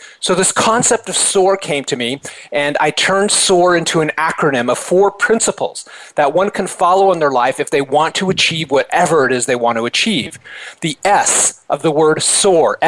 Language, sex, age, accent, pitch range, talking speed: English, male, 40-59, American, 150-185 Hz, 200 wpm